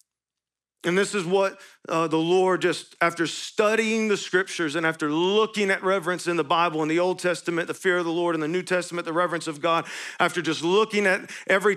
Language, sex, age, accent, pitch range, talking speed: English, male, 40-59, American, 170-205 Hz, 215 wpm